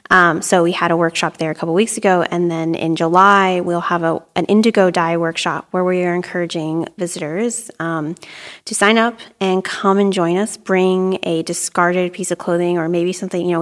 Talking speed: 205 wpm